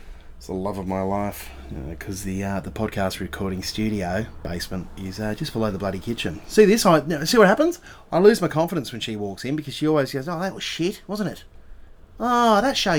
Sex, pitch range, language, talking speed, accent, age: male, 110-170 Hz, English, 225 wpm, Australian, 30-49